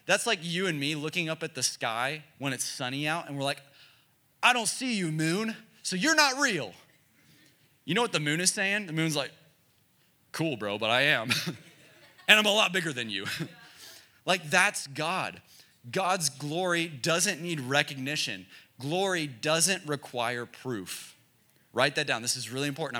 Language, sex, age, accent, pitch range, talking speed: English, male, 30-49, American, 125-165 Hz, 175 wpm